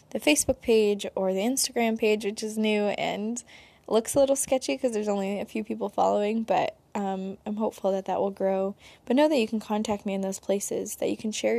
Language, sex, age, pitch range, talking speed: English, female, 10-29, 200-225 Hz, 230 wpm